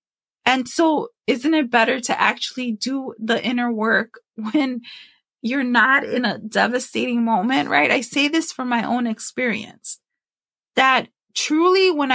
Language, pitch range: English, 235-280 Hz